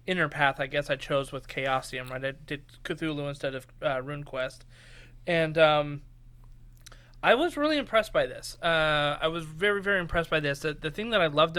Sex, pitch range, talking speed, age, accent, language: male, 135-170 Hz, 195 wpm, 30-49, American, English